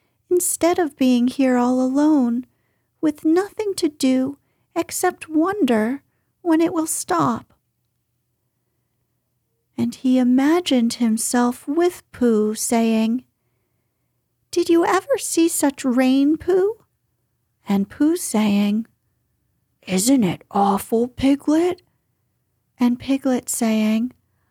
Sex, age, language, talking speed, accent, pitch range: female, 40-59, English, 100 wpm, American, 210-295 Hz